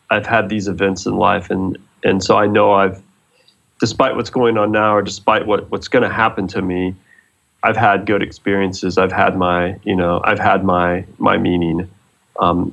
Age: 30-49